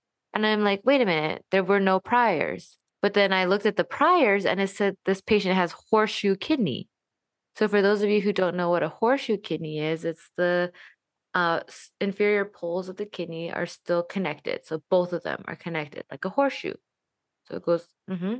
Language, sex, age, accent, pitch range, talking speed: English, female, 20-39, American, 175-210 Hz, 200 wpm